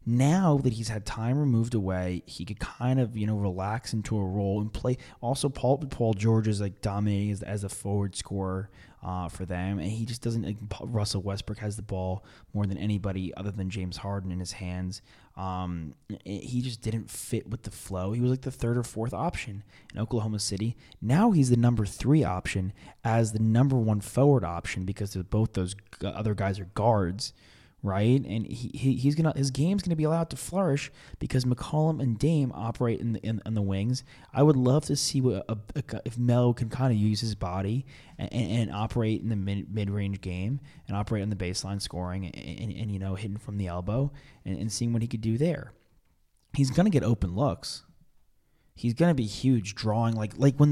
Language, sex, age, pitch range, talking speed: English, male, 20-39, 100-125 Hz, 215 wpm